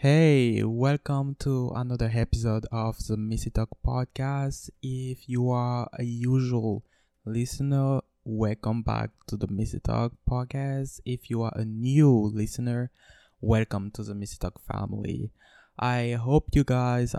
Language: English